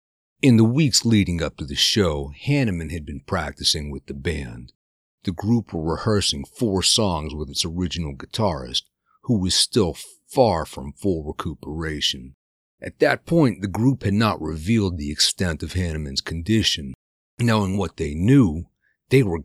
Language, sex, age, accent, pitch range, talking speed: English, male, 50-69, American, 75-105 Hz, 155 wpm